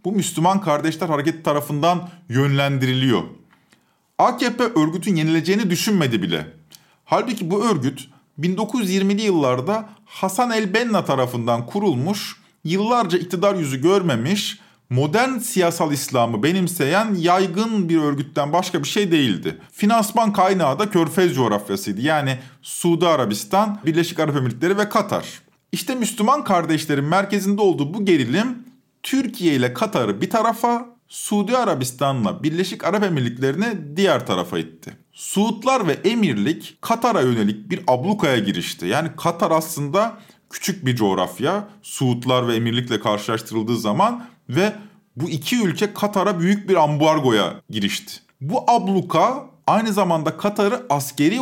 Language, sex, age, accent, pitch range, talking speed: Turkish, male, 50-69, native, 145-205 Hz, 120 wpm